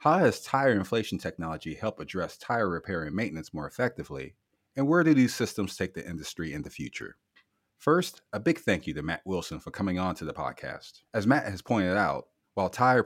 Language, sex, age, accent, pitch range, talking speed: English, male, 30-49, American, 80-120 Hz, 205 wpm